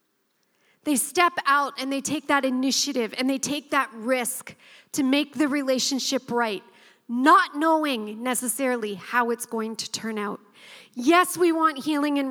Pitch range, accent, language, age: 260-325 Hz, American, English, 40-59